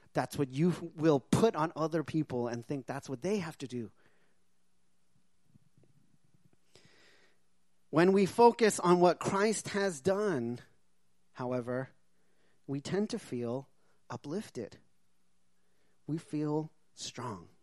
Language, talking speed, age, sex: English, 110 wpm, 30-49, male